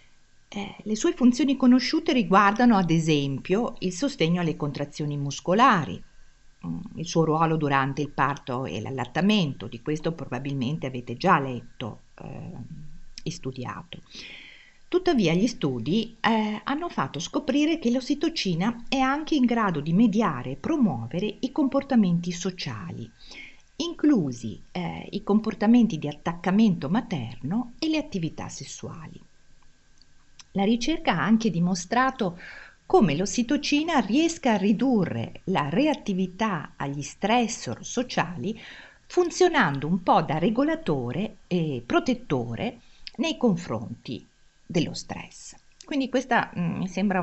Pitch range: 155-240 Hz